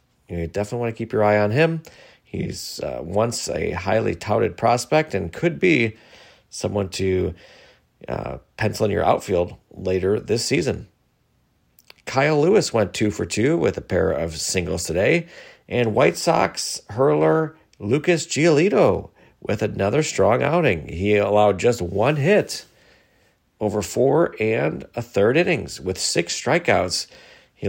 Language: English